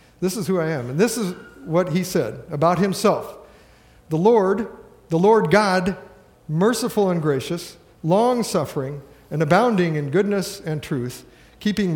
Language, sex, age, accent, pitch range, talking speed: English, male, 50-69, American, 145-185 Hz, 145 wpm